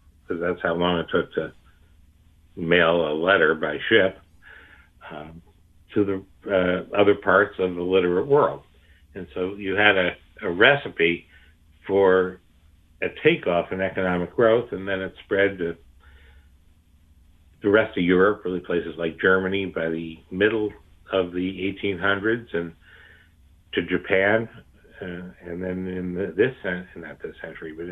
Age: 60-79